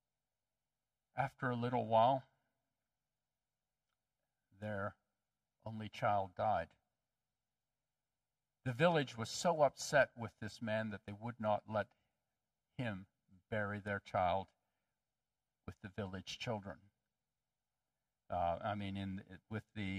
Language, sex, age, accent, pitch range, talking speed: English, male, 50-69, American, 105-135 Hz, 100 wpm